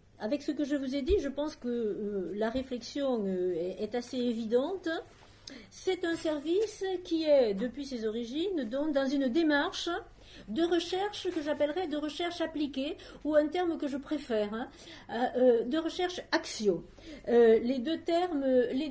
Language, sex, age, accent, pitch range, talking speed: French, female, 50-69, French, 245-325 Hz, 170 wpm